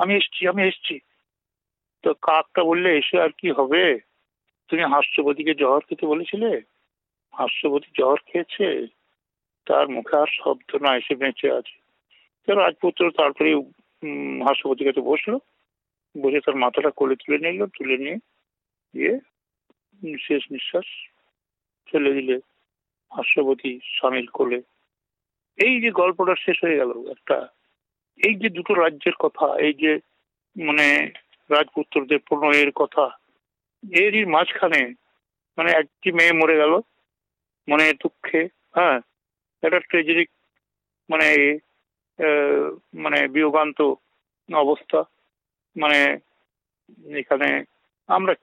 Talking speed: 105 wpm